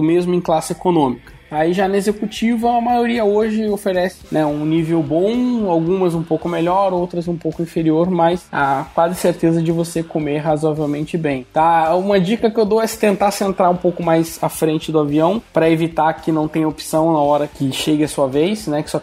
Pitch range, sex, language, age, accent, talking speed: 145-180 Hz, male, Portuguese, 20-39, Brazilian, 205 wpm